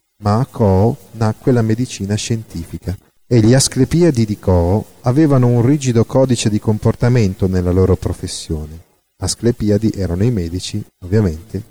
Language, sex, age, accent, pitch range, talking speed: Italian, male, 40-59, native, 95-120 Hz, 135 wpm